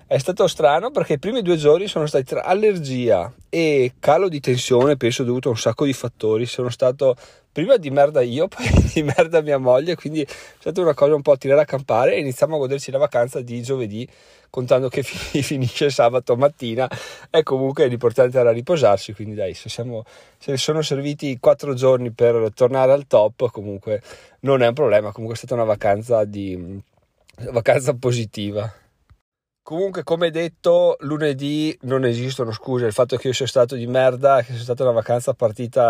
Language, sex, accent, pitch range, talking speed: Italian, male, native, 115-145 Hz, 185 wpm